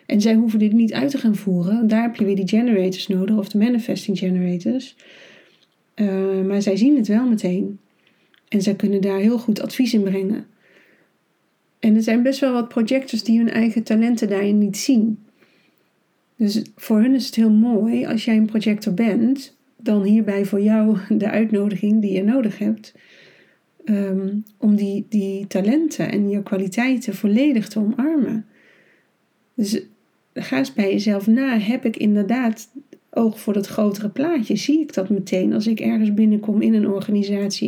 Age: 40-59